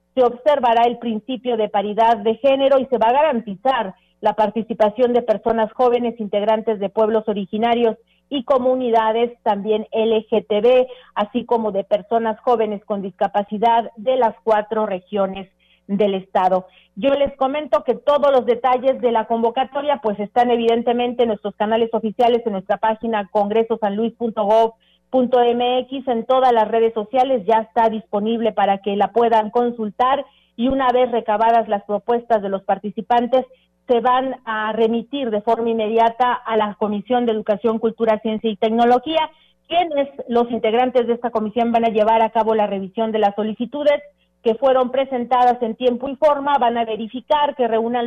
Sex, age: female, 40-59